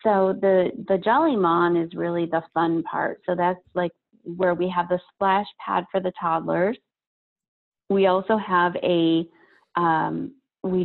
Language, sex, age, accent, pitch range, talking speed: English, female, 30-49, American, 170-190 Hz, 155 wpm